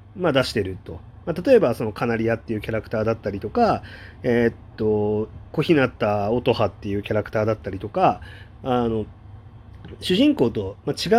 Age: 30-49